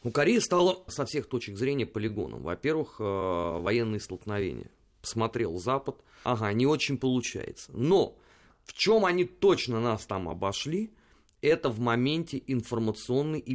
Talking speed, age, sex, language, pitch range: 130 wpm, 30-49, male, Russian, 110-170 Hz